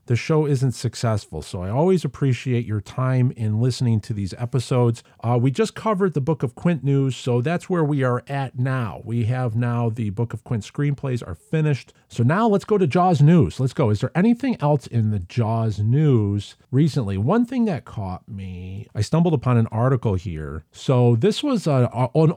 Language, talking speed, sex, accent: English, 200 wpm, male, American